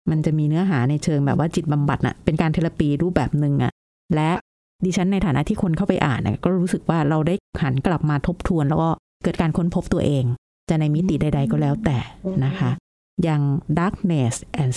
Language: Thai